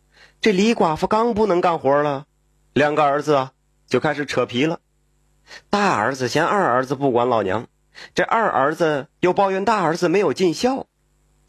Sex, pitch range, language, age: male, 125-185 Hz, Chinese, 30-49